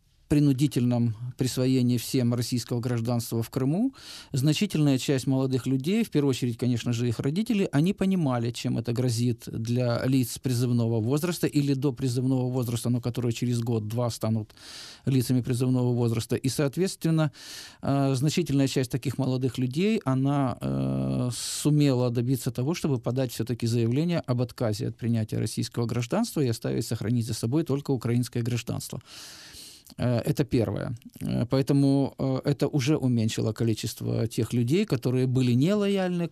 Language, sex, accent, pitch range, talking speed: Russian, male, native, 120-145 Hz, 130 wpm